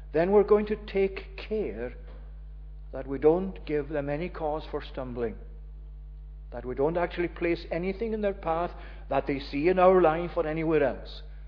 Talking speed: 175 wpm